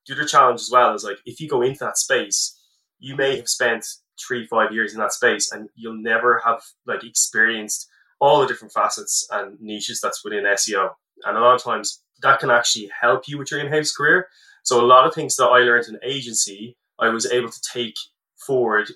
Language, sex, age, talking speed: English, male, 20-39, 215 wpm